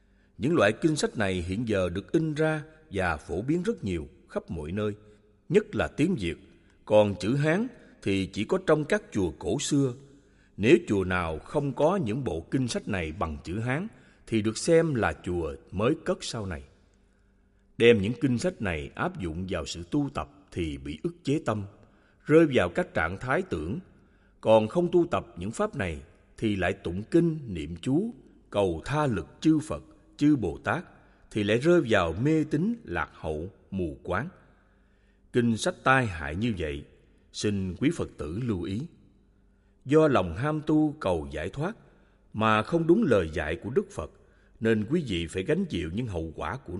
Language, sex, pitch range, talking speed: Vietnamese, male, 95-150 Hz, 185 wpm